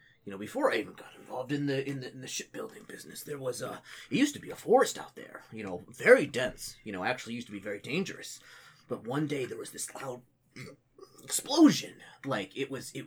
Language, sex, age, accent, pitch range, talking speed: English, male, 30-49, American, 110-145 Hz, 230 wpm